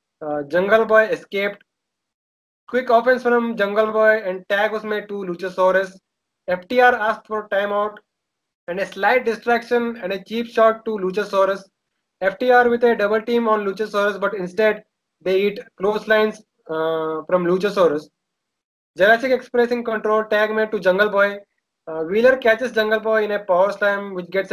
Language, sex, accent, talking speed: English, male, Indian, 160 wpm